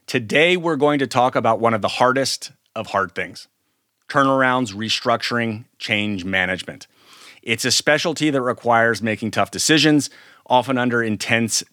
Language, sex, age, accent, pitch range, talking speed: English, male, 30-49, American, 110-130 Hz, 145 wpm